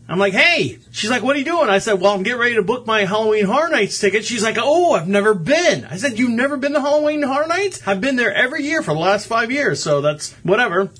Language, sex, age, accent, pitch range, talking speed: English, male, 30-49, American, 160-225 Hz, 275 wpm